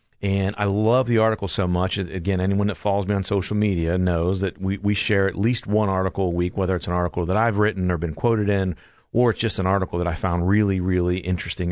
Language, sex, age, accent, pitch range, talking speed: English, male, 40-59, American, 90-105 Hz, 245 wpm